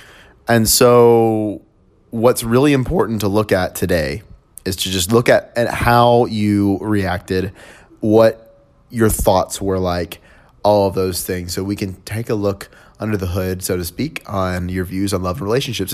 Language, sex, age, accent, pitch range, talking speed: English, male, 30-49, American, 90-110 Hz, 170 wpm